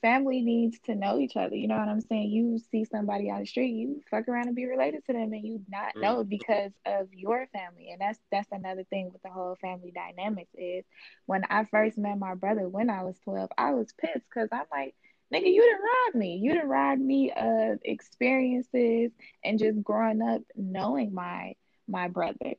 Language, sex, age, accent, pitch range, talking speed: English, female, 20-39, American, 185-220 Hz, 205 wpm